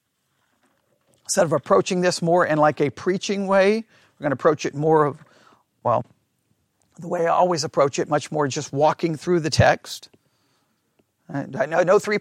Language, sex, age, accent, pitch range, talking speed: English, male, 40-59, American, 160-220 Hz, 175 wpm